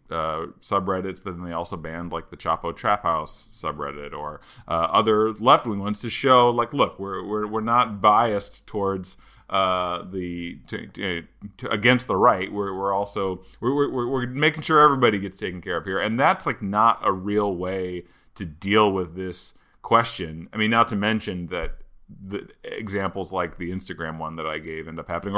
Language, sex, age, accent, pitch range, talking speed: English, male, 30-49, American, 90-115 Hz, 190 wpm